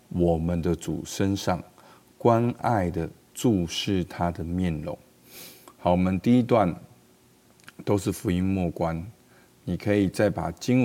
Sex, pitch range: male, 85-105 Hz